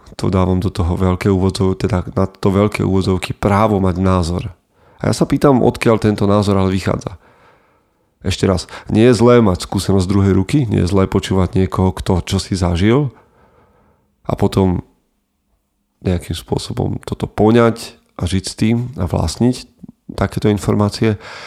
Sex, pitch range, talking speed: male, 95-110 Hz, 155 wpm